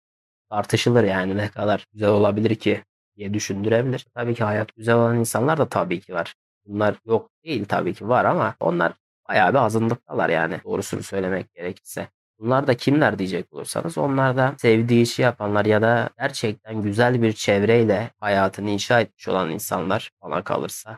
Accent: native